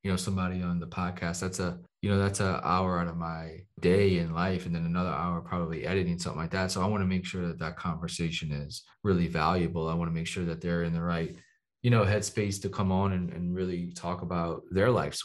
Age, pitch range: 20-39, 85-95 Hz